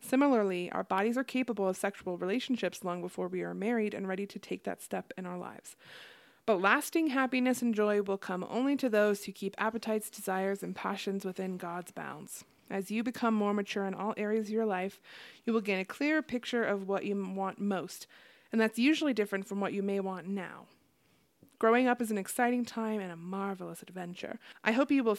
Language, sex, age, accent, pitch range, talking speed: English, female, 30-49, American, 190-230 Hz, 205 wpm